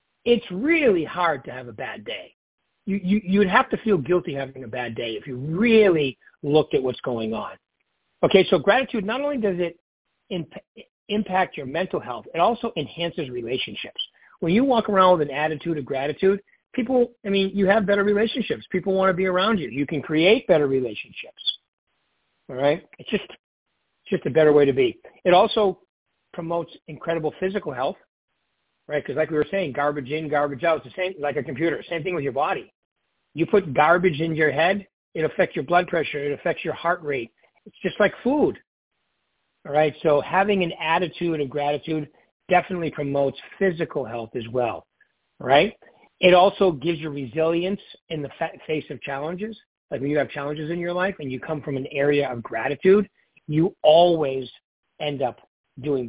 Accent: American